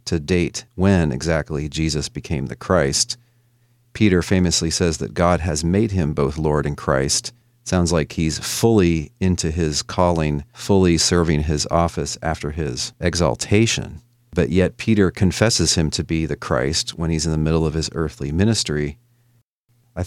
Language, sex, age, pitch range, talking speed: English, male, 40-59, 80-100 Hz, 160 wpm